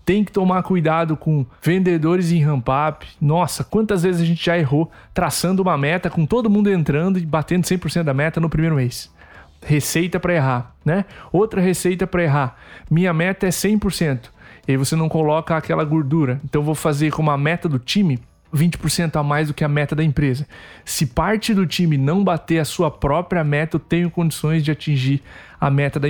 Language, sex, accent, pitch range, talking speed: Portuguese, male, Brazilian, 145-170 Hz, 195 wpm